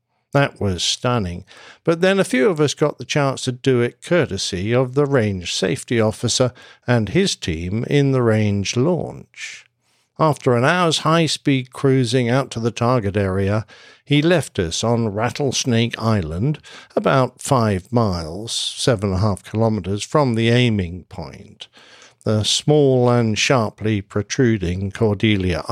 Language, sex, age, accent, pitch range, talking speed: English, male, 60-79, British, 110-140 Hz, 145 wpm